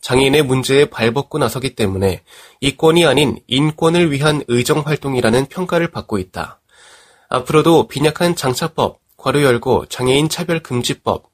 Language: Korean